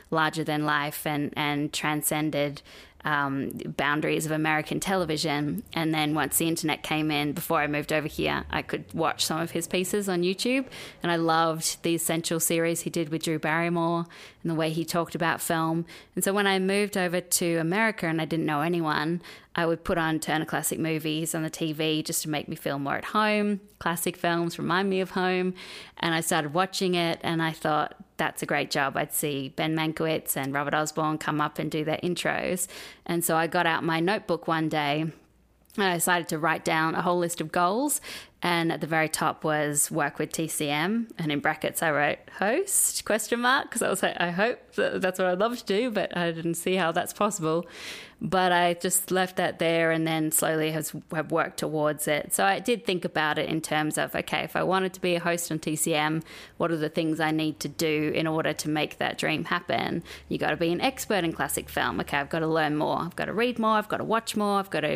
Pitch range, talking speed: 155-180 Hz, 225 wpm